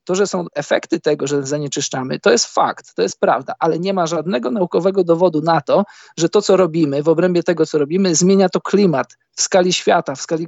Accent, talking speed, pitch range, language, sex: native, 220 wpm, 155-180 Hz, Polish, male